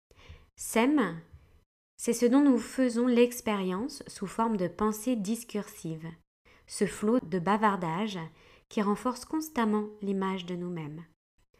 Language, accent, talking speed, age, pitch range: French, French, 115 wpm, 20-39, 180-225 Hz